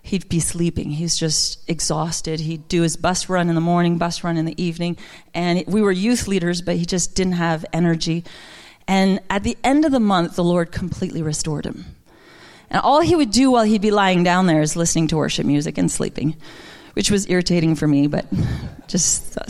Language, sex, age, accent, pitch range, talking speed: English, female, 40-59, American, 170-220 Hz, 210 wpm